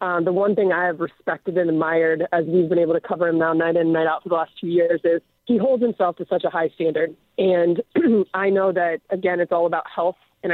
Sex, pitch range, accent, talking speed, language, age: female, 165-185 Hz, American, 260 wpm, English, 30-49